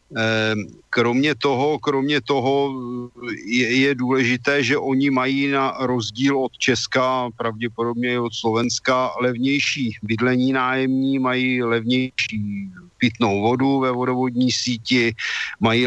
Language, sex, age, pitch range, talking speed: Slovak, male, 50-69, 115-140 Hz, 105 wpm